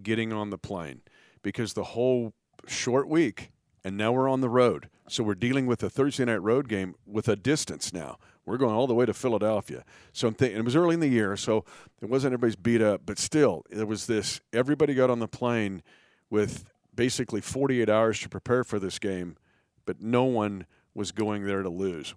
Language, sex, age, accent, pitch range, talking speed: English, male, 50-69, American, 100-125 Hz, 210 wpm